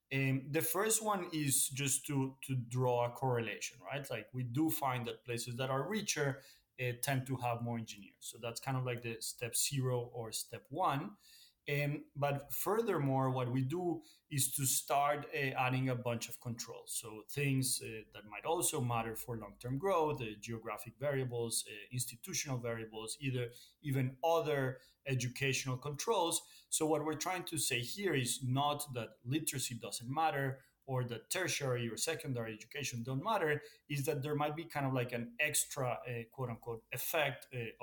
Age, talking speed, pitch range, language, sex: 30-49, 175 wpm, 120-145 Hz, English, male